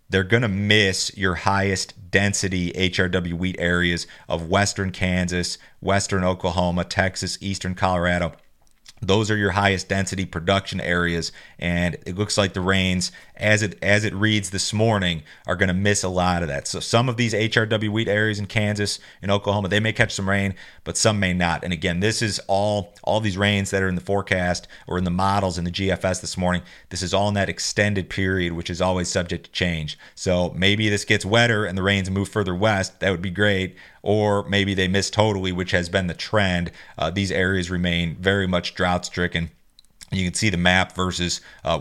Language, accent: English, American